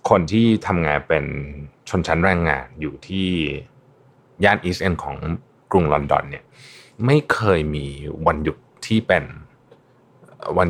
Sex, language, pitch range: male, Thai, 85-115 Hz